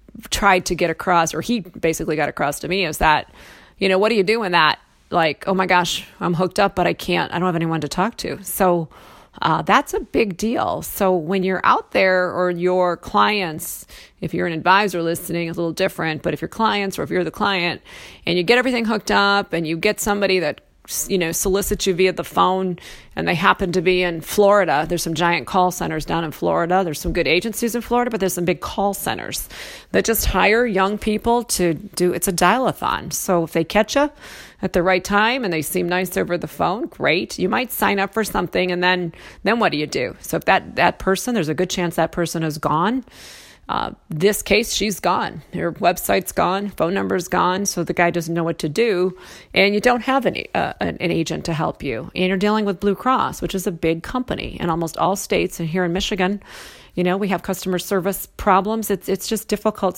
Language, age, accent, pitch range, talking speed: English, 40-59, American, 175-200 Hz, 230 wpm